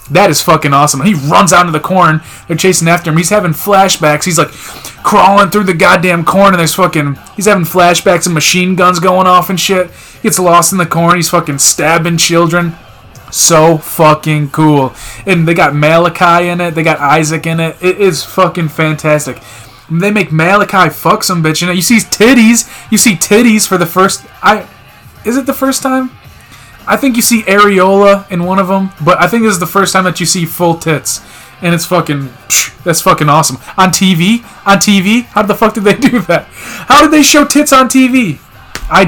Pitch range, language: 155-195 Hz, English